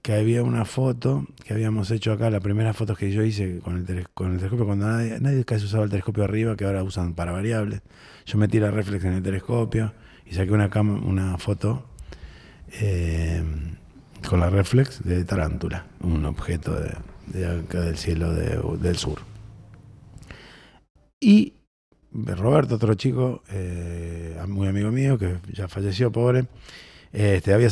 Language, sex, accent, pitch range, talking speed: Spanish, male, Argentinian, 90-120 Hz, 165 wpm